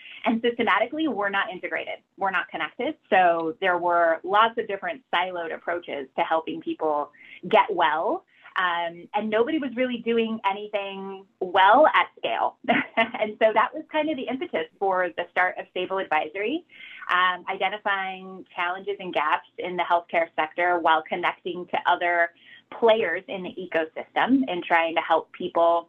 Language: English